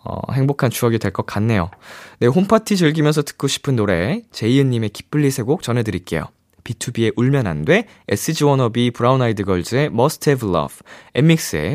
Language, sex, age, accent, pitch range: Korean, male, 20-39, native, 110-160 Hz